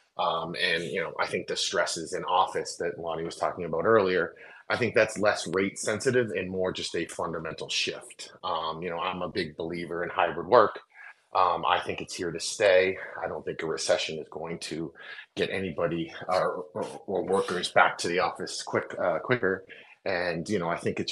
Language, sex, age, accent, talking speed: English, male, 30-49, American, 205 wpm